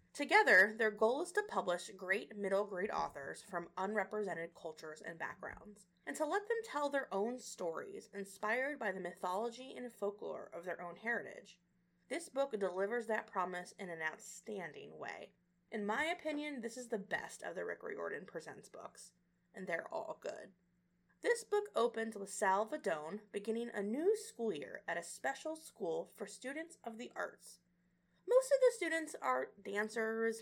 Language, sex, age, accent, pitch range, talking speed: English, female, 20-39, American, 180-295 Hz, 165 wpm